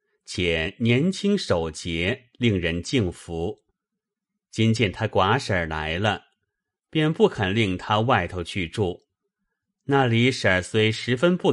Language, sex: Chinese, male